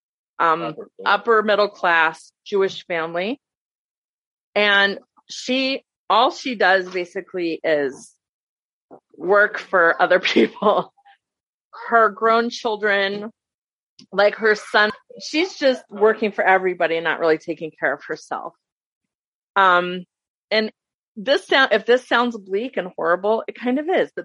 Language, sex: English, female